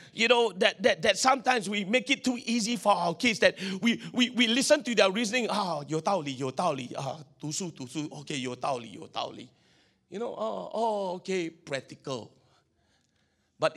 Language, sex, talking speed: English, male, 190 wpm